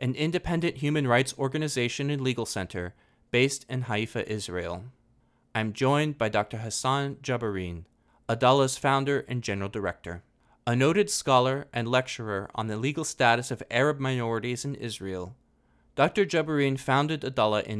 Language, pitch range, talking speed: English, 115-140 Hz, 140 wpm